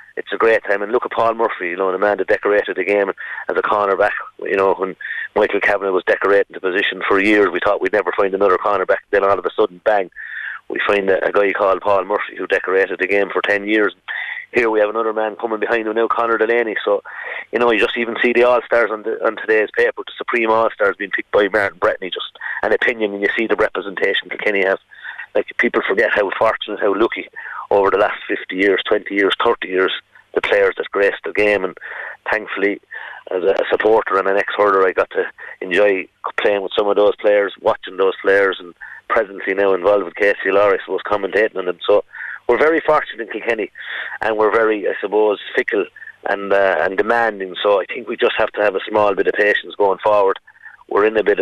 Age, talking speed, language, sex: 30-49, 230 wpm, English, male